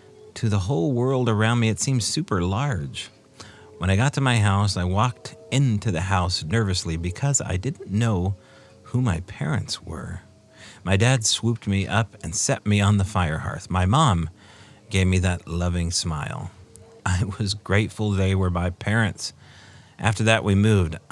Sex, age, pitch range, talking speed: male, 40-59, 90-110 Hz, 170 wpm